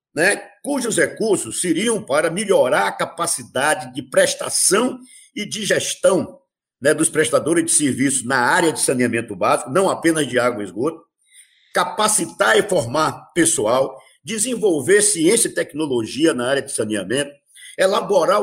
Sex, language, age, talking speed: male, Portuguese, 50-69, 135 wpm